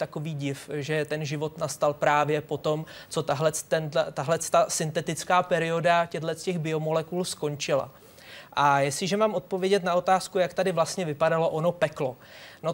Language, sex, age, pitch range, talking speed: Czech, male, 20-39, 150-170 Hz, 145 wpm